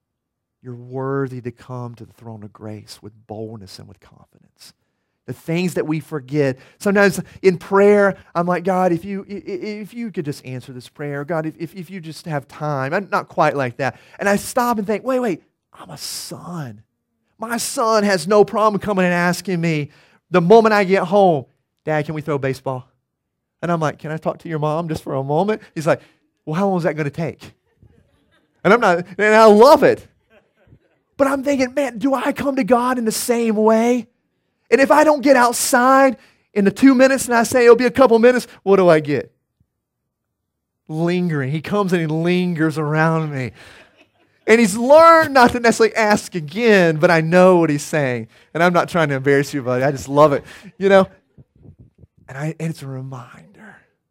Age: 40-59